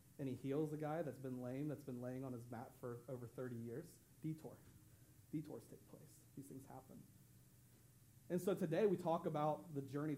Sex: male